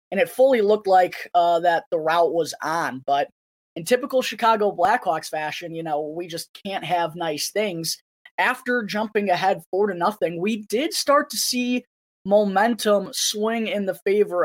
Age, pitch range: 20-39, 170-210 Hz